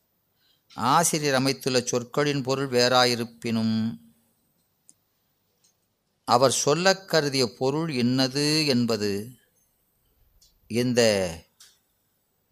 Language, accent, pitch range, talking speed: Tamil, native, 115-145 Hz, 60 wpm